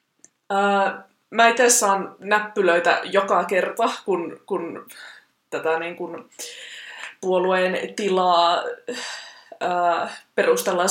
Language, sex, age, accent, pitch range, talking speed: Finnish, female, 20-39, native, 185-250 Hz, 90 wpm